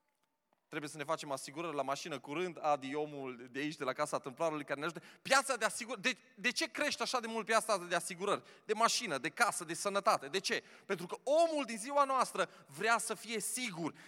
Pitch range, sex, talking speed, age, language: 185-240 Hz, male, 215 wpm, 20-39, Romanian